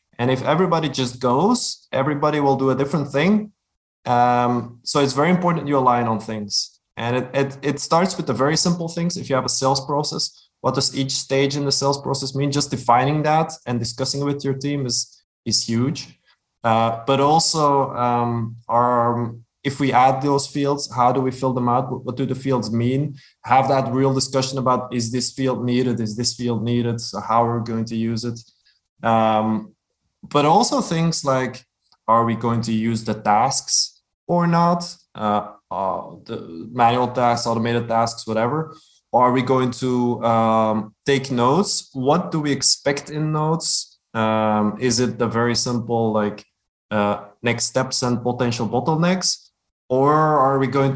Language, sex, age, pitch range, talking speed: English, male, 20-39, 115-145 Hz, 180 wpm